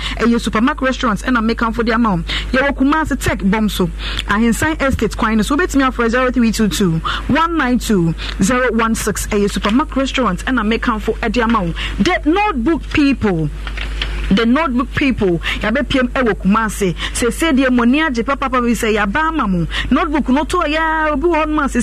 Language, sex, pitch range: English, female, 215-280 Hz